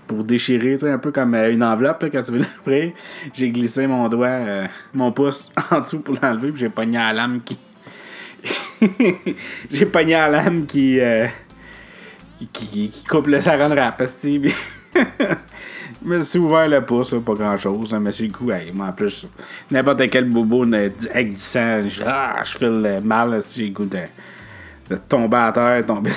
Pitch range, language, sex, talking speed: 115-145 Hz, French, male, 175 wpm